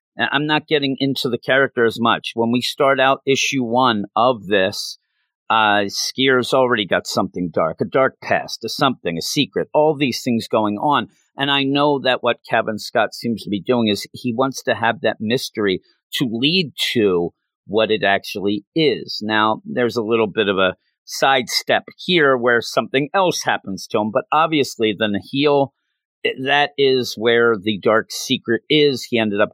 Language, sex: English, male